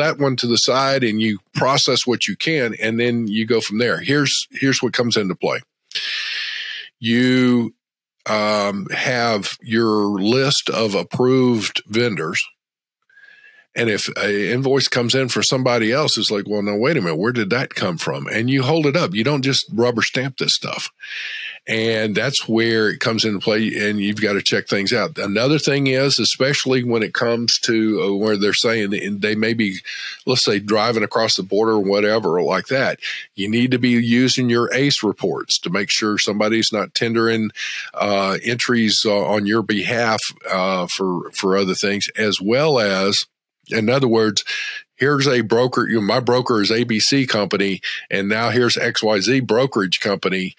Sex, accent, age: male, American, 50-69